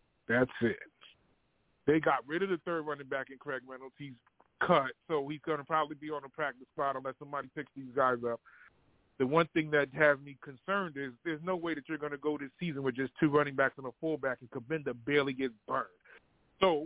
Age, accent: 30-49, American